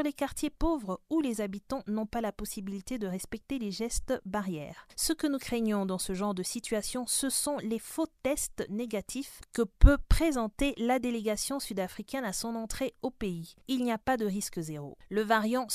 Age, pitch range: 30-49, 205-275 Hz